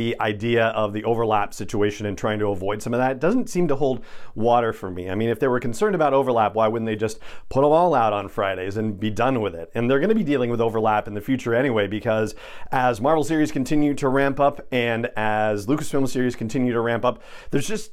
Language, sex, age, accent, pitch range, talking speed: English, male, 40-59, American, 110-140 Hz, 245 wpm